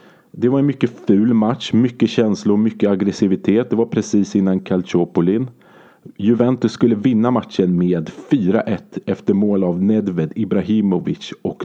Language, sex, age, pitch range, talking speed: Swedish, male, 30-49, 95-115 Hz, 145 wpm